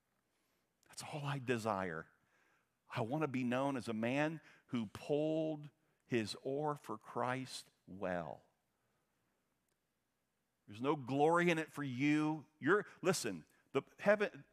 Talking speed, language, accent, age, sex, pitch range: 125 wpm, English, American, 50-69, male, 115-150 Hz